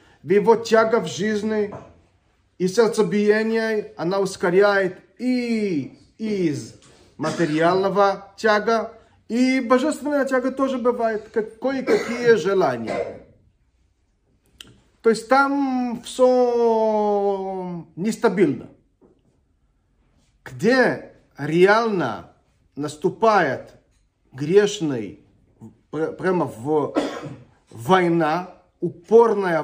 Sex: male